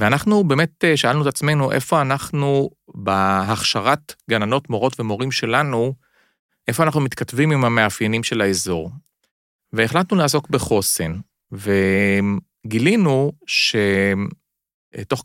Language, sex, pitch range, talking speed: Hebrew, male, 105-145 Hz, 95 wpm